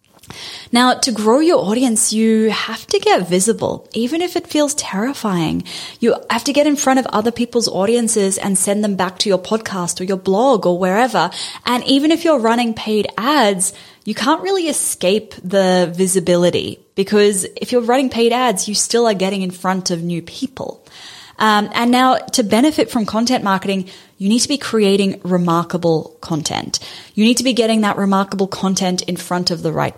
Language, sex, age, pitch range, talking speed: English, female, 10-29, 185-235 Hz, 185 wpm